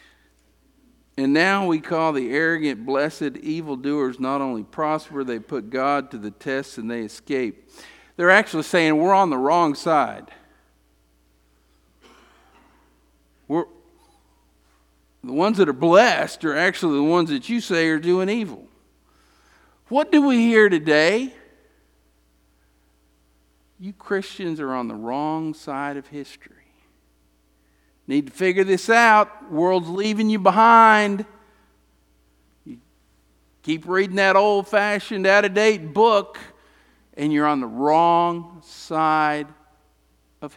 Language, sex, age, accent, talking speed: English, male, 50-69, American, 120 wpm